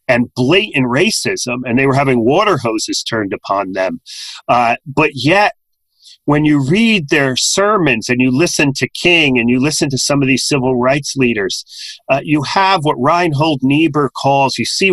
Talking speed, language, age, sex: 175 wpm, English, 40-59, male